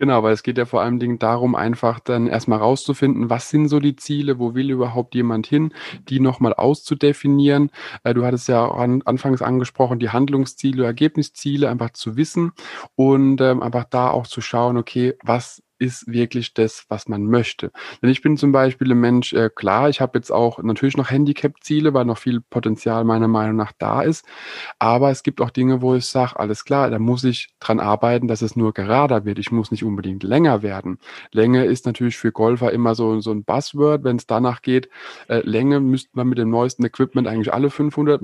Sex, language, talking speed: male, German, 200 wpm